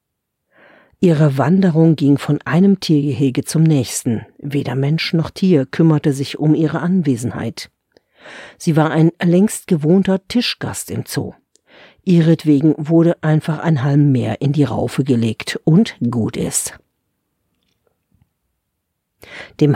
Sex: female